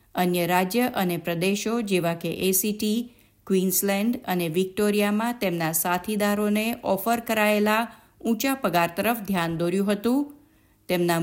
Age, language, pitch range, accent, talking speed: 50-69, Gujarati, 175-235 Hz, native, 110 wpm